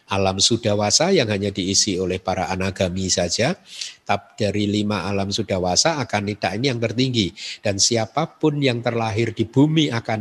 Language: Indonesian